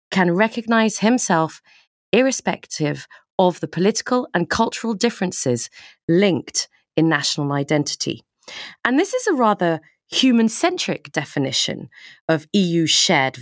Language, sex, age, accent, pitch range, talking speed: English, female, 40-59, British, 150-225 Hz, 105 wpm